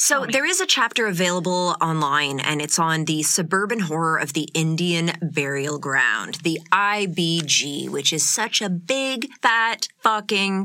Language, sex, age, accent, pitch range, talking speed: English, female, 30-49, American, 155-205 Hz, 150 wpm